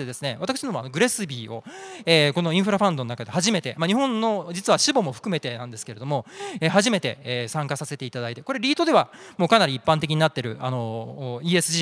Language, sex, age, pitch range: Japanese, male, 20-39, 140-200 Hz